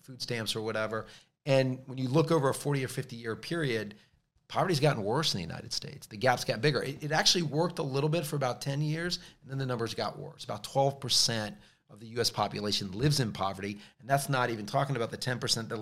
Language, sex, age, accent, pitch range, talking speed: English, male, 30-49, American, 115-145 Hz, 235 wpm